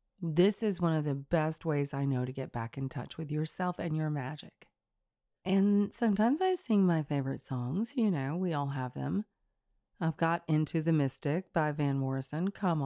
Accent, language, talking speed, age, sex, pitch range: American, English, 190 wpm, 30-49, female, 145-210 Hz